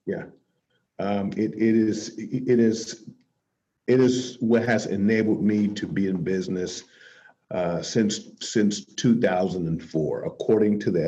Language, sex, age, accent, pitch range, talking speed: English, male, 50-69, American, 100-115 Hz, 130 wpm